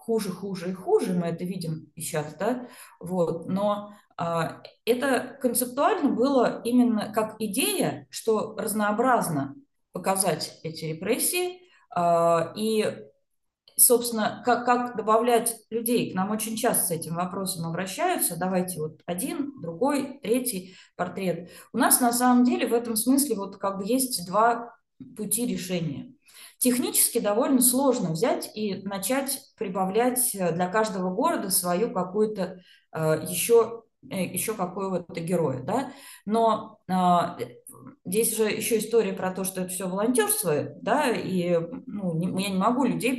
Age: 20-39